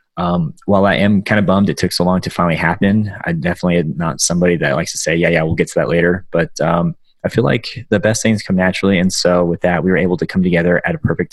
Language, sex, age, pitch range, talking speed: English, male, 20-39, 85-95 Hz, 280 wpm